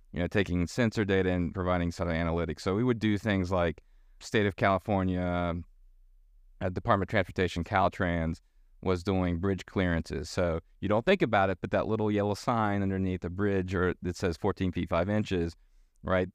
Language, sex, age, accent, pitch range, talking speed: English, male, 30-49, American, 90-110 Hz, 185 wpm